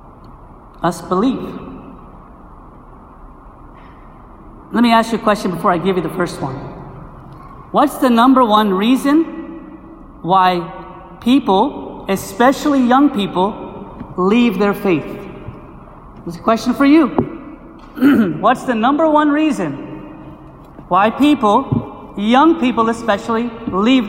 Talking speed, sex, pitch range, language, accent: 110 wpm, male, 200-280 Hz, English, American